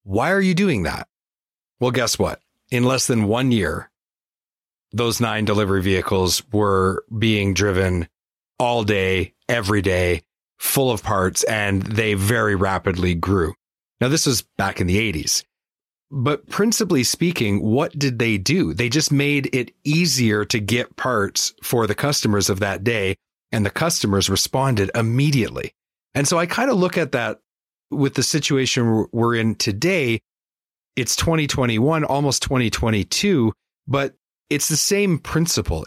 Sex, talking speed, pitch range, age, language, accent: male, 145 wpm, 100-145 Hz, 30-49, English, American